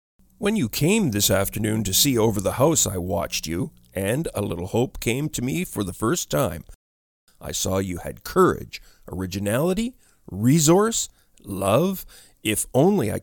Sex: male